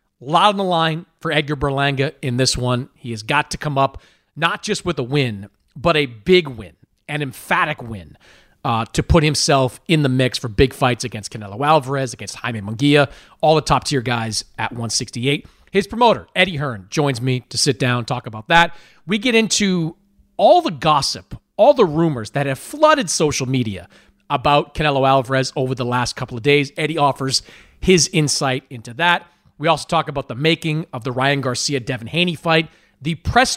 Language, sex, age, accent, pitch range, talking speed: English, male, 40-59, American, 125-165 Hz, 190 wpm